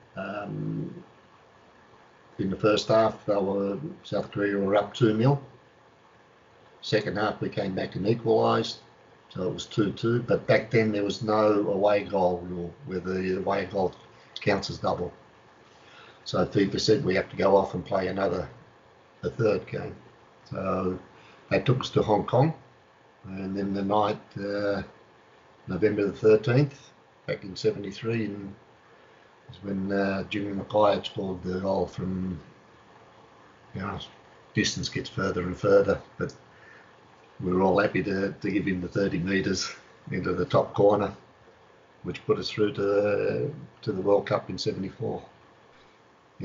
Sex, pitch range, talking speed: male, 95-105 Hz, 155 wpm